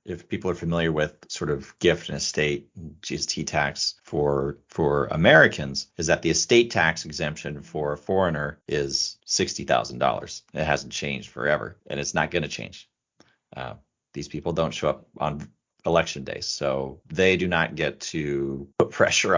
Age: 40-59